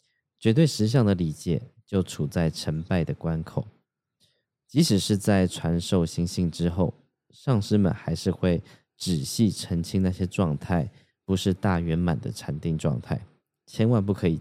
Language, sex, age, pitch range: Chinese, male, 20-39, 85-110 Hz